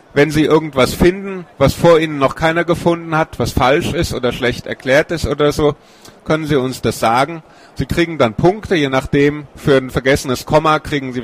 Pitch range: 120-155 Hz